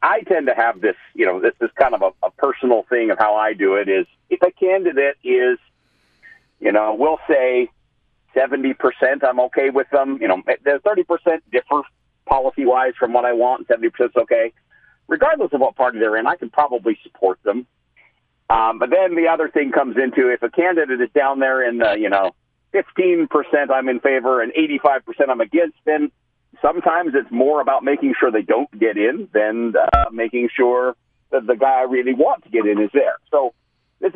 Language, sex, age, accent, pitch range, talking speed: English, male, 50-69, American, 120-165 Hz, 195 wpm